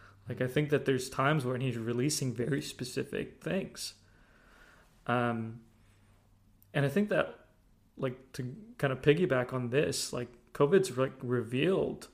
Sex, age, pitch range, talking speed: male, 20-39, 120-145 Hz, 140 wpm